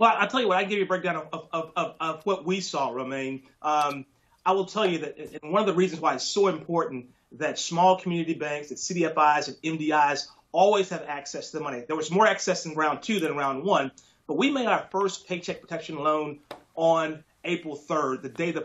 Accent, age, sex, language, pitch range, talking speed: American, 30-49, male, English, 150-185 Hz, 230 wpm